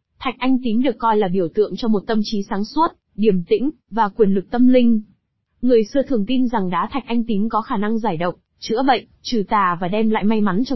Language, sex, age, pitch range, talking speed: Vietnamese, female, 20-39, 200-250 Hz, 250 wpm